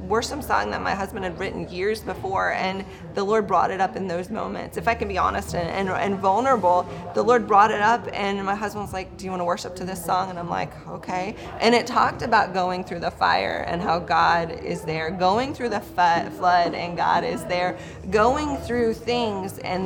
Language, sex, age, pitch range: English, female, 20-39, 180-225 Hz